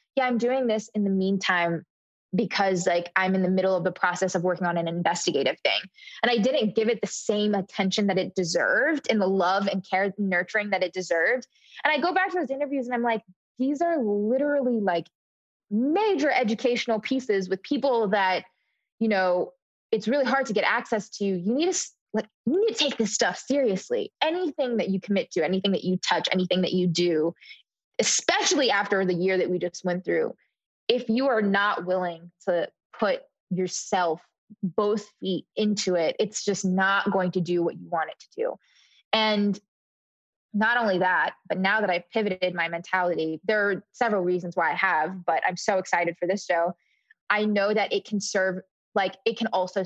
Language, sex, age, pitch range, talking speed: English, female, 20-39, 180-225 Hz, 195 wpm